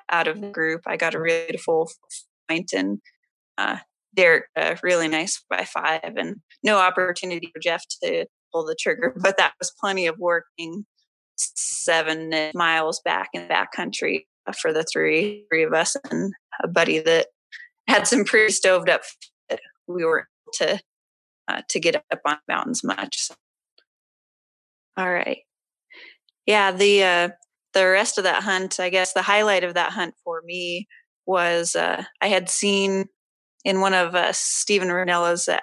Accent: American